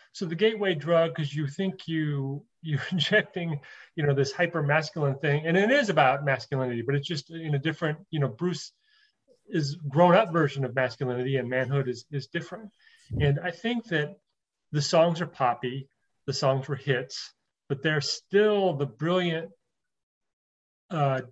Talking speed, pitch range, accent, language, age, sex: 165 wpm, 135-170 Hz, American, English, 30-49, male